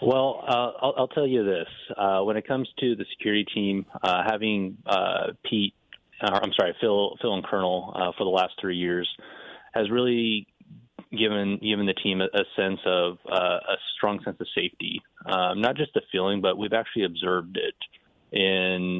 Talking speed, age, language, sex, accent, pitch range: 185 wpm, 30-49, English, male, American, 95-110 Hz